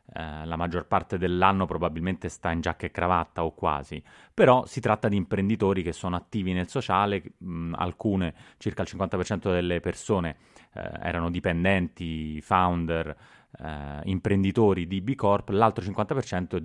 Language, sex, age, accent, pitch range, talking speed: Italian, male, 30-49, native, 85-110 Hz, 135 wpm